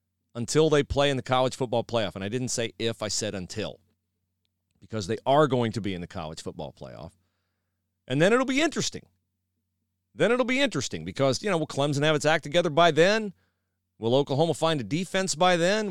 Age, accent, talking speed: 40-59, American, 205 wpm